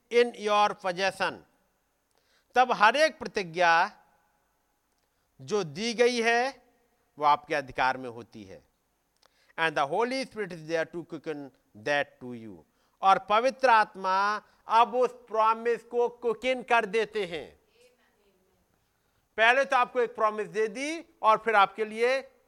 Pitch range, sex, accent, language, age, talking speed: 145-240 Hz, male, native, Hindi, 50-69, 120 wpm